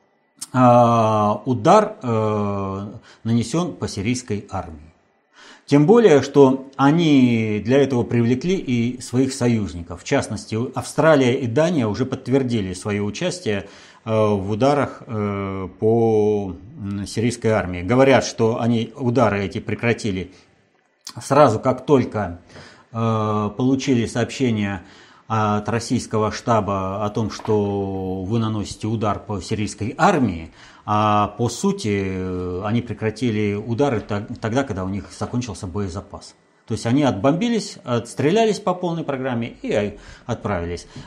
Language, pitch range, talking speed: Russian, 105-135 Hz, 110 wpm